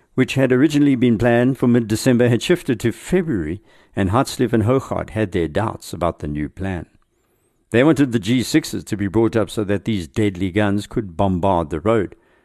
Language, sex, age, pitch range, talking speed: English, male, 60-79, 95-120 Hz, 190 wpm